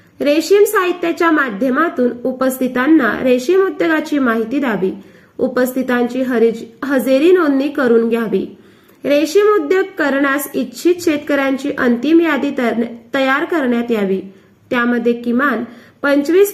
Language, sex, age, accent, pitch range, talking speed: Marathi, female, 20-39, native, 235-315 Hz, 100 wpm